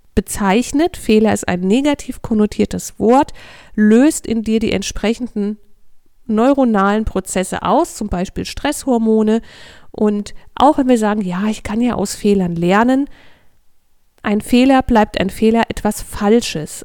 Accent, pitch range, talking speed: German, 200-260 Hz, 130 wpm